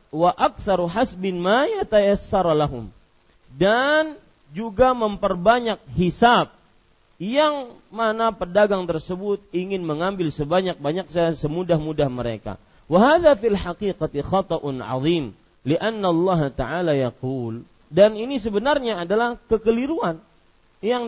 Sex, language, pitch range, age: male, Malay, 155-225 Hz, 40-59